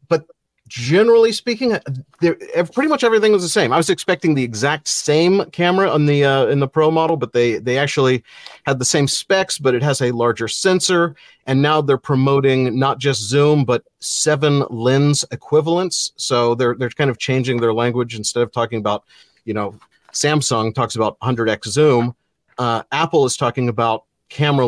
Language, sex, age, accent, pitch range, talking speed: English, male, 40-59, American, 120-165 Hz, 180 wpm